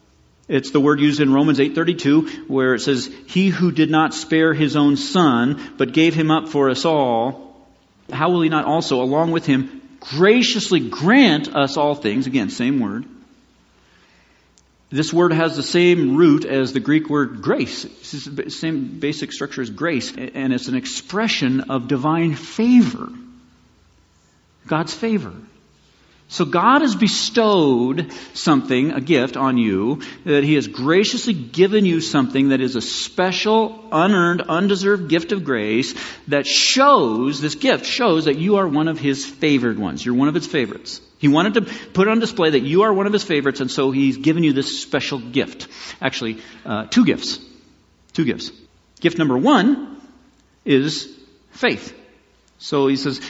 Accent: American